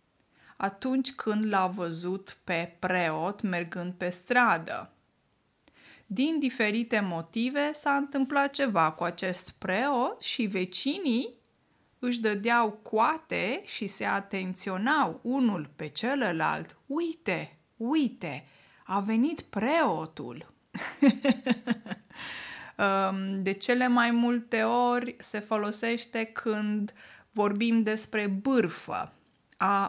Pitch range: 190-245 Hz